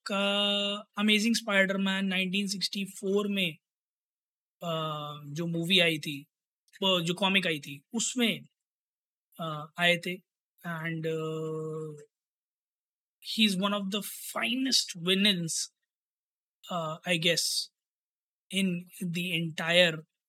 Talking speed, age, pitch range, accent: 85 wpm, 20-39, 175-220 Hz, native